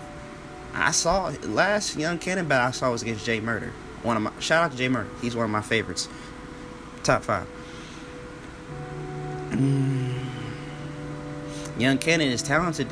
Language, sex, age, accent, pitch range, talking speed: English, male, 20-39, American, 115-160 Hz, 150 wpm